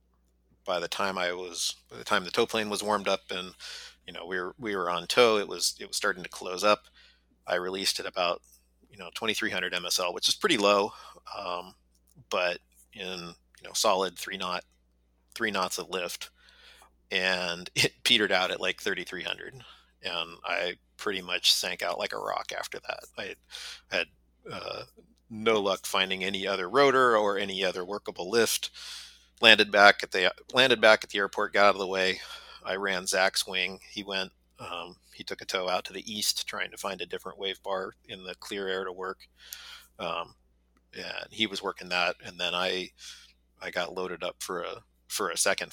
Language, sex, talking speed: English, male, 200 wpm